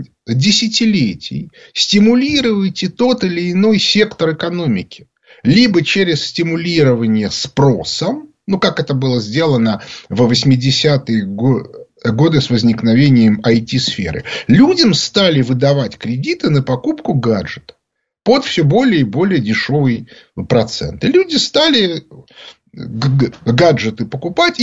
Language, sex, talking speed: Russian, male, 100 wpm